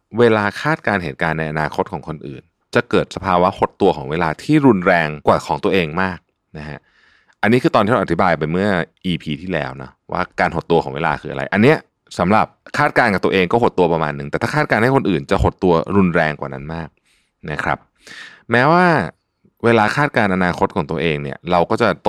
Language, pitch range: Thai, 80-115 Hz